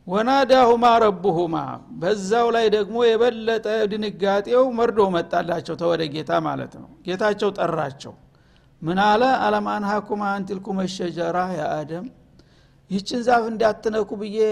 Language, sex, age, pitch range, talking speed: Amharic, male, 60-79, 175-225 Hz, 105 wpm